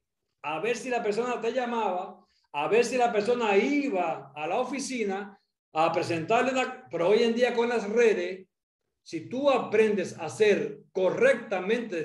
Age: 60-79